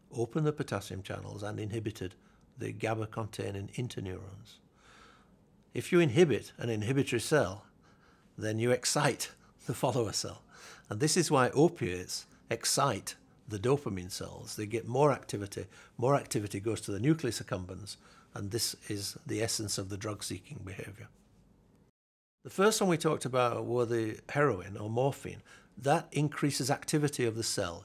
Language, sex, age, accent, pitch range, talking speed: English, male, 60-79, British, 105-145 Hz, 150 wpm